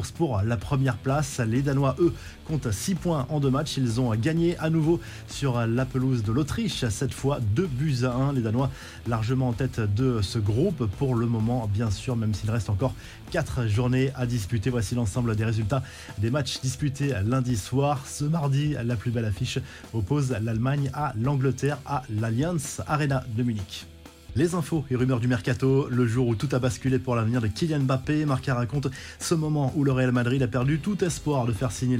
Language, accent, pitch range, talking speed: French, French, 115-140 Hz, 200 wpm